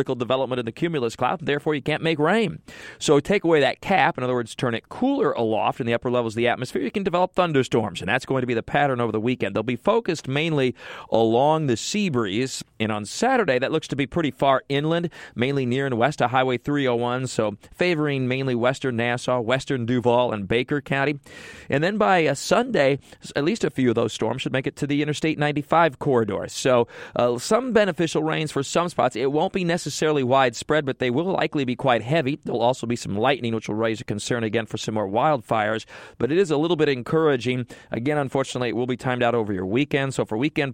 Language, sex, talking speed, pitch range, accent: English, male, 225 wpm, 120-150 Hz, American